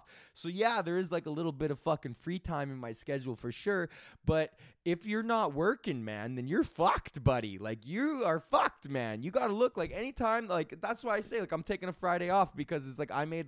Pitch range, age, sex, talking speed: 115-160 Hz, 20-39, male, 240 wpm